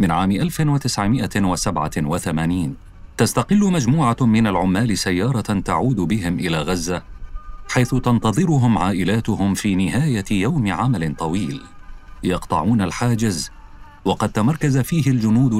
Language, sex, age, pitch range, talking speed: Arabic, male, 40-59, 90-120 Hz, 100 wpm